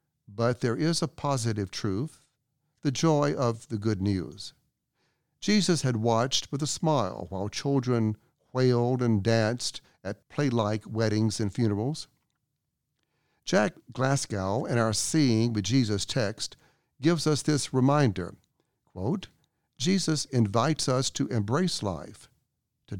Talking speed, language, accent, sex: 125 wpm, English, American, male